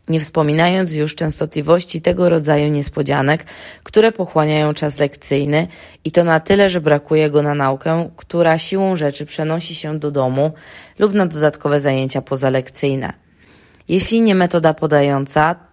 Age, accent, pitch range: 20-39, native, 140-170 Hz